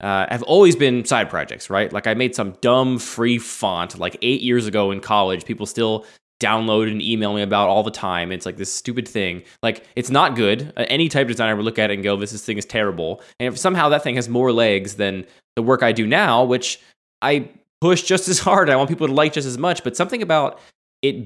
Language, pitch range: English, 105-145 Hz